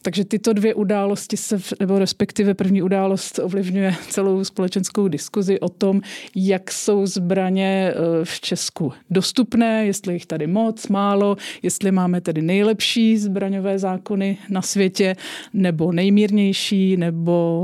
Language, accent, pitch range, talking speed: English, Czech, 185-210 Hz, 125 wpm